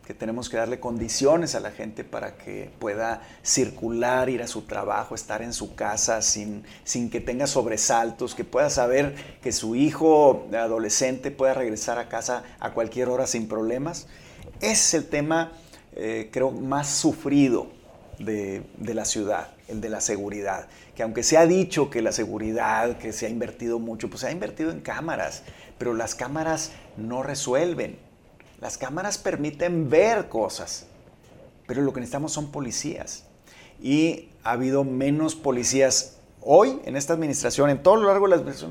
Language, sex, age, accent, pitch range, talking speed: Spanish, male, 40-59, Mexican, 120-160 Hz, 165 wpm